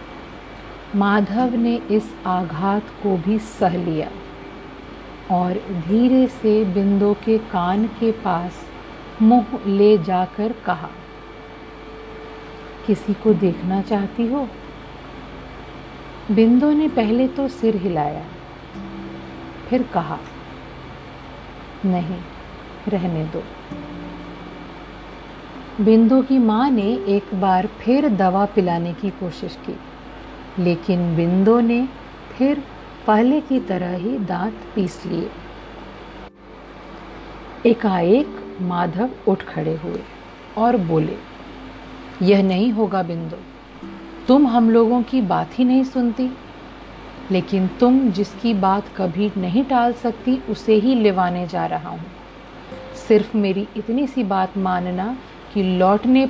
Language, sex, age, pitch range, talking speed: Hindi, female, 50-69, 180-235 Hz, 105 wpm